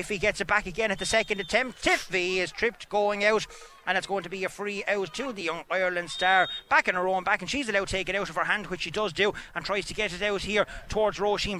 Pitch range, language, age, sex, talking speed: 190-215 Hz, English, 30-49, male, 290 wpm